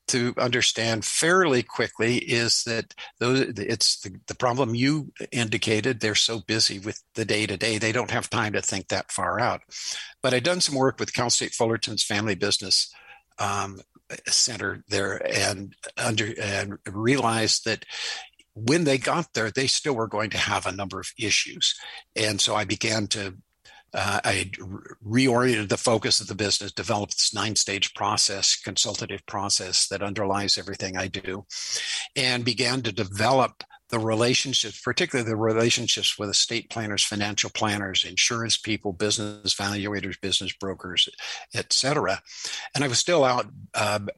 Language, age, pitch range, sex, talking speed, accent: English, 60-79, 100-120 Hz, male, 150 wpm, American